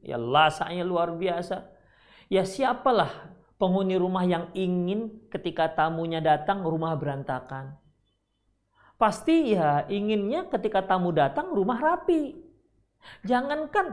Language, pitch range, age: Indonesian, 150-230 Hz, 40-59